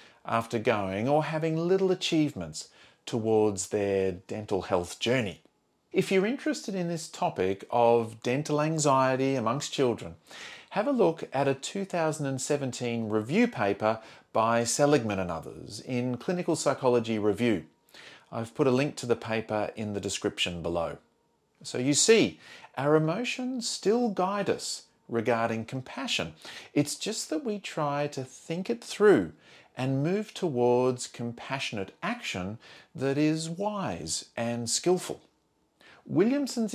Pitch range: 120-170 Hz